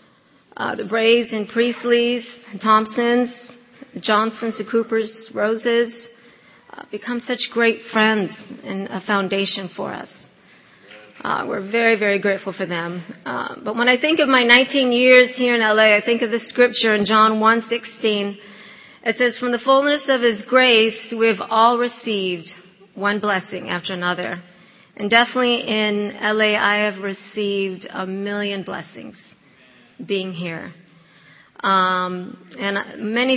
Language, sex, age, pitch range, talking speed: English, female, 40-59, 200-235 Hz, 140 wpm